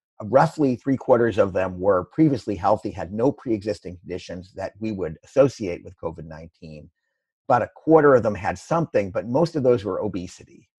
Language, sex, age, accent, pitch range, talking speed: English, male, 50-69, American, 95-130 Hz, 170 wpm